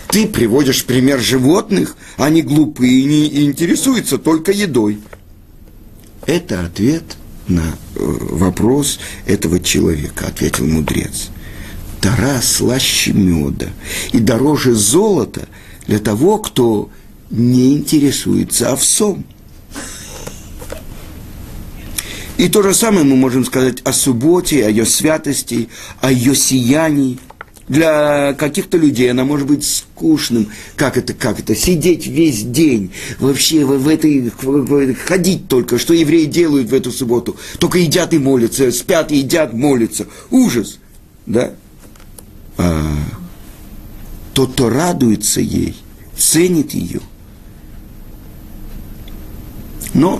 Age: 50-69